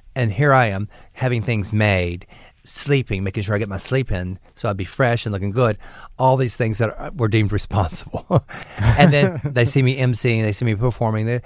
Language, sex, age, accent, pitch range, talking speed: English, male, 40-59, American, 105-130 Hz, 210 wpm